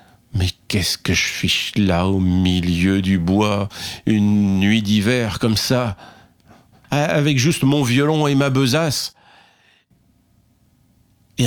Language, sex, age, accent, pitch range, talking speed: French, male, 50-69, French, 100-135 Hz, 115 wpm